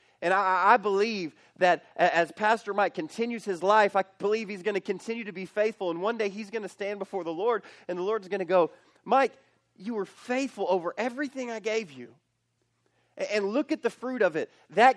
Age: 30-49